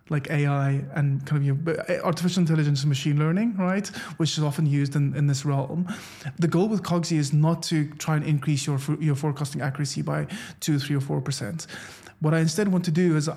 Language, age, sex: English, 20-39, male